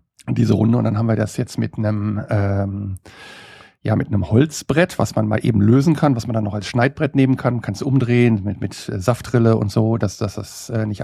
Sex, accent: male, German